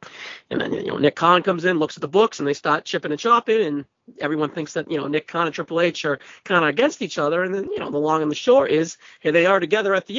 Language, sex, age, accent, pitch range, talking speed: English, male, 40-59, American, 155-230 Hz, 300 wpm